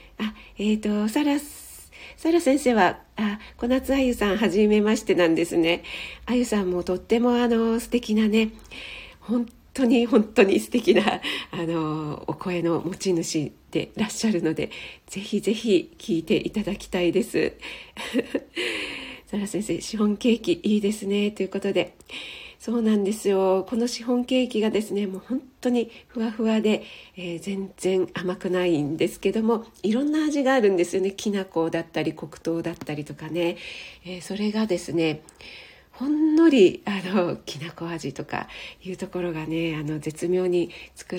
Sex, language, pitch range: female, Japanese, 170-230 Hz